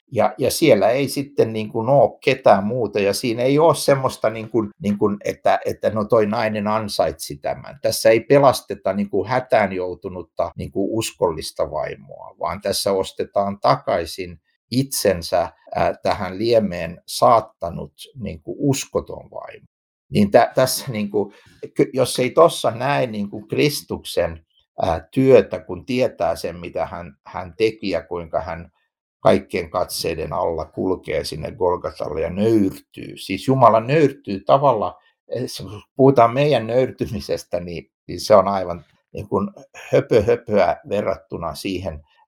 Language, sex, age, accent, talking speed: Finnish, male, 60-79, native, 135 wpm